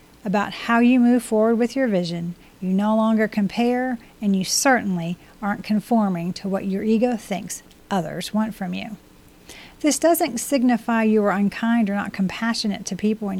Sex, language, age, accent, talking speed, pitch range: female, English, 40-59, American, 170 wpm, 190-230 Hz